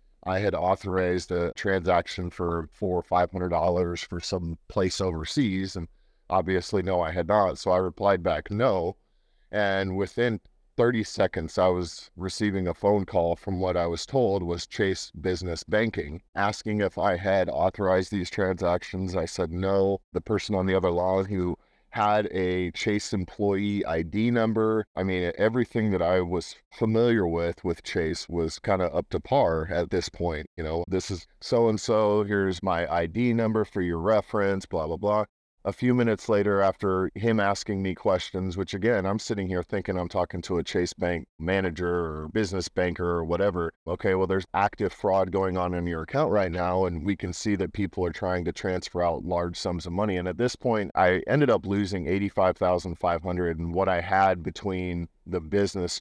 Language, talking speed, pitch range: English, 180 wpm, 85-100 Hz